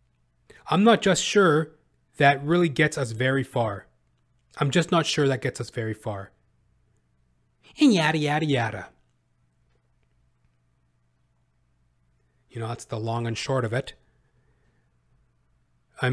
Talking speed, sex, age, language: 125 wpm, male, 30-49, English